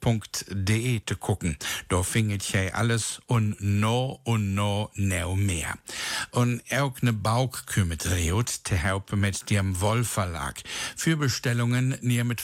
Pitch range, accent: 100-120 Hz, German